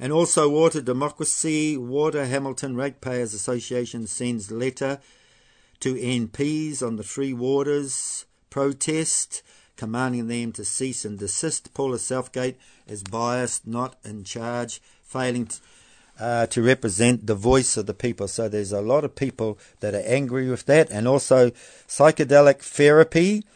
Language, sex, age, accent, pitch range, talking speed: English, male, 50-69, Australian, 105-130 Hz, 140 wpm